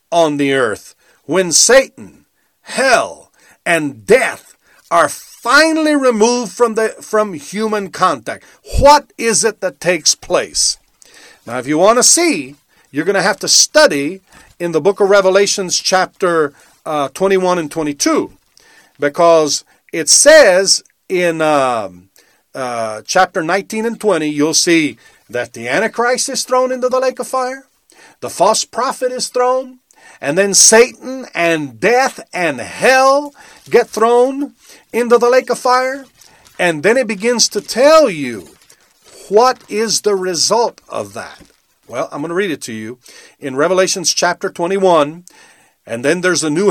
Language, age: English, 50-69